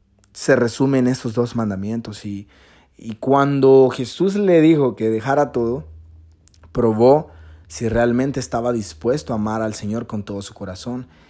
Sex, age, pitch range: male, 30-49, 110-135 Hz